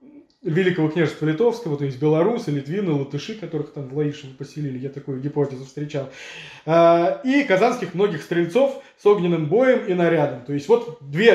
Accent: native